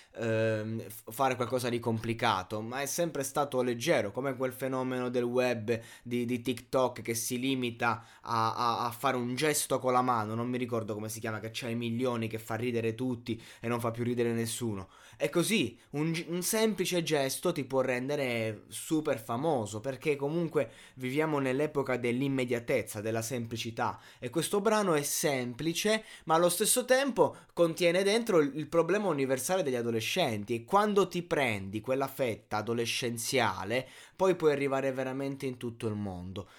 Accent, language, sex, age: native, Italian, male, 20-39